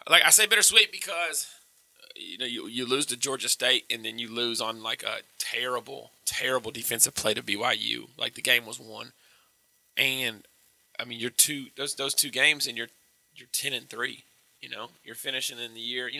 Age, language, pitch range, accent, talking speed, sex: 20-39, English, 115-140 Hz, American, 200 wpm, male